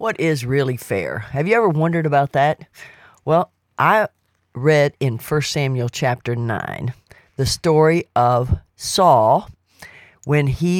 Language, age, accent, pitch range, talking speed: English, 50-69, American, 130-165 Hz, 135 wpm